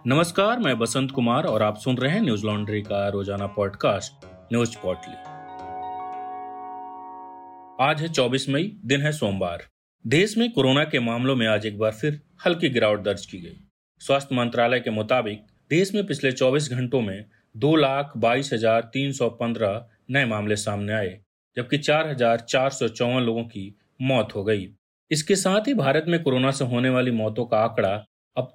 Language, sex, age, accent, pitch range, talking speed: Hindi, male, 30-49, native, 115-155 Hz, 165 wpm